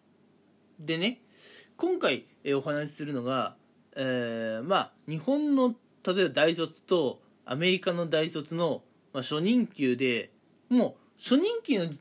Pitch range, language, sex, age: 140-210 Hz, Japanese, male, 20-39